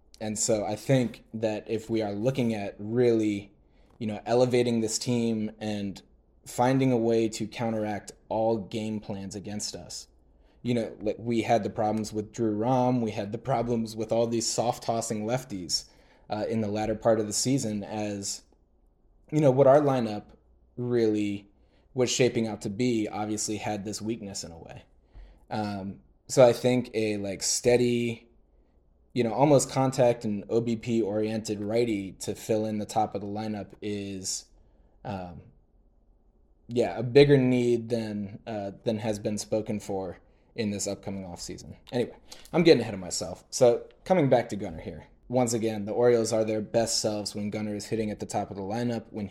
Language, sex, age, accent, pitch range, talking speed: English, male, 20-39, American, 105-115 Hz, 175 wpm